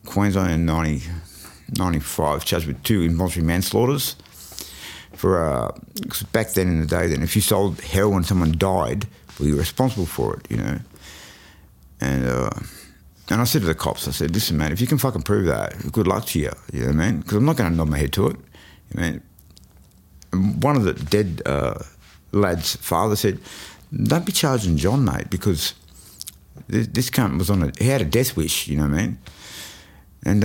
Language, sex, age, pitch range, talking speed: English, male, 60-79, 80-115 Hz, 195 wpm